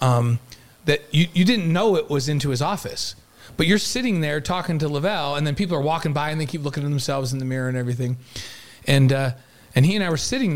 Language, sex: English, male